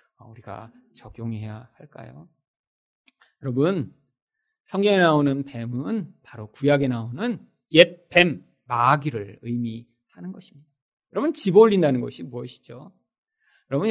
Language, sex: Korean, male